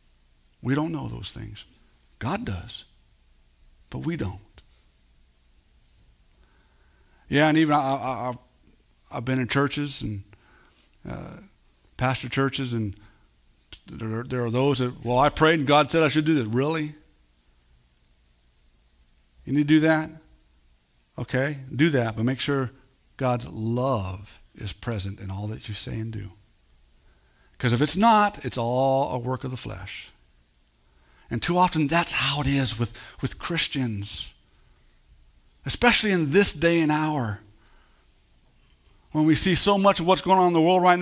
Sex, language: male, English